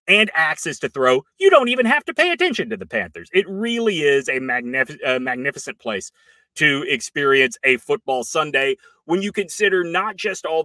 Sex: male